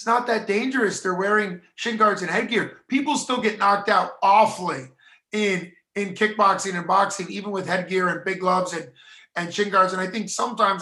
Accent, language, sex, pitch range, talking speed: American, English, male, 175-205 Hz, 190 wpm